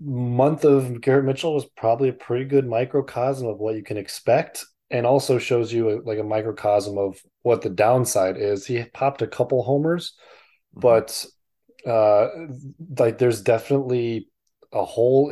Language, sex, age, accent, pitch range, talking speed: English, male, 20-39, American, 110-135 Hz, 155 wpm